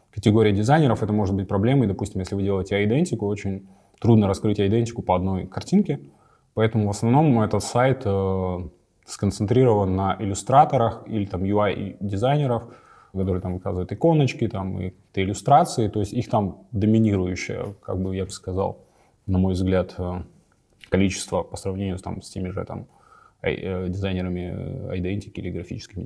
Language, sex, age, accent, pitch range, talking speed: Russian, male, 20-39, native, 95-120 Hz, 140 wpm